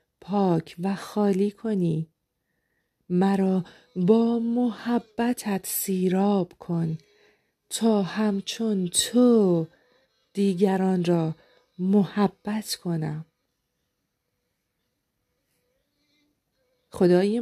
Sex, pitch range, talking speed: female, 185-230 Hz, 60 wpm